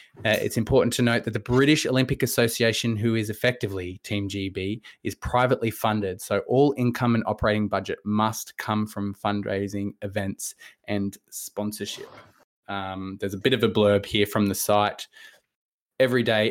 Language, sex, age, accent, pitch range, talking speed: English, male, 20-39, Australian, 100-115 Hz, 155 wpm